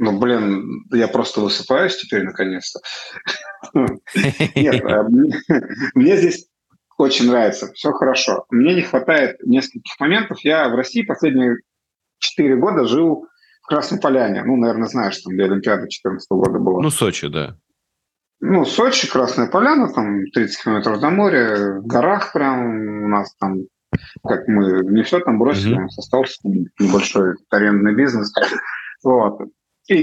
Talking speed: 135 wpm